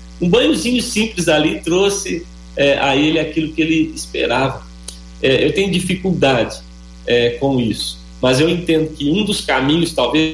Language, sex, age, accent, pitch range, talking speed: Portuguese, male, 40-59, Brazilian, 120-160 Hz, 155 wpm